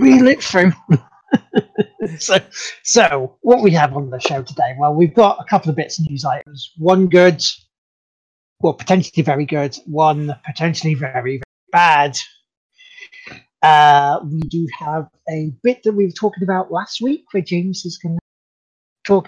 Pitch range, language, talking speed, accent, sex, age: 150-205 Hz, English, 160 wpm, British, male, 30-49